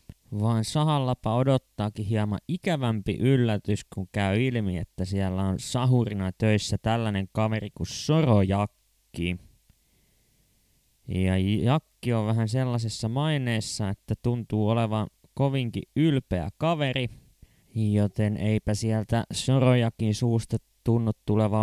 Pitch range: 95-120 Hz